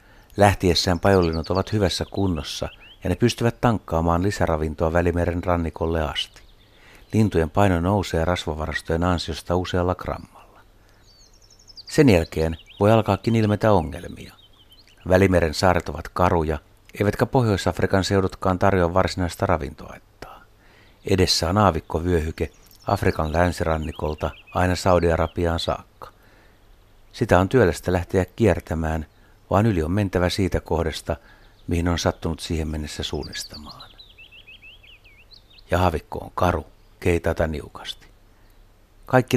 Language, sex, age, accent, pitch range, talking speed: Finnish, male, 60-79, native, 85-100 Hz, 100 wpm